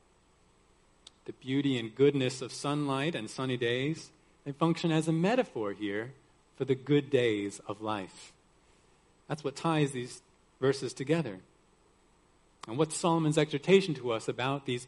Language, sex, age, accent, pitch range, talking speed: English, male, 40-59, American, 115-165 Hz, 140 wpm